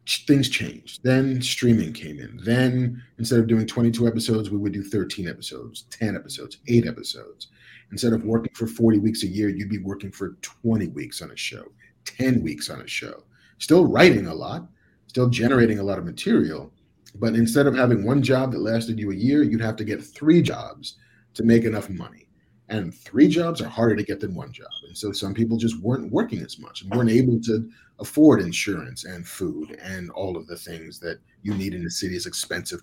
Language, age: English, 40-59